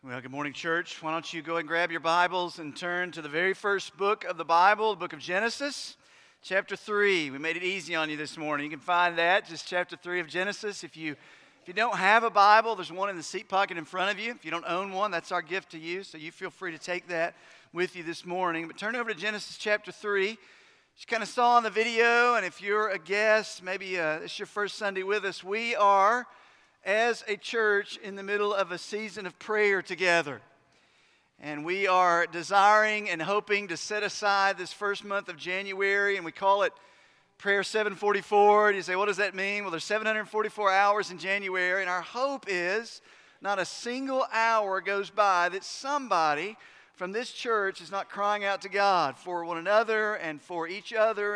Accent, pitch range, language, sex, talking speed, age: American, 175-210 Hz, English, male, 220 wpm, 40-59